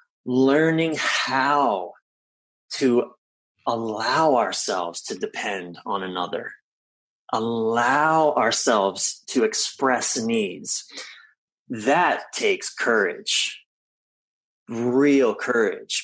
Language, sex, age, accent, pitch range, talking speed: English, male, 30-49, American, 115-155 Hz, 70 wpm